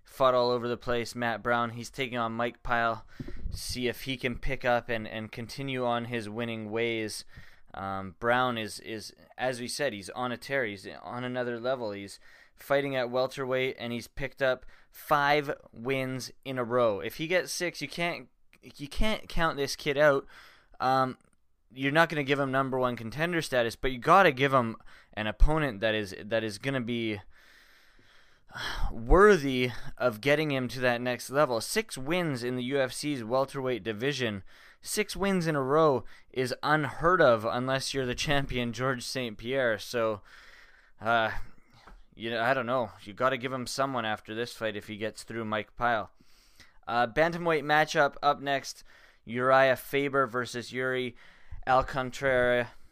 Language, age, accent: English, 20-39, American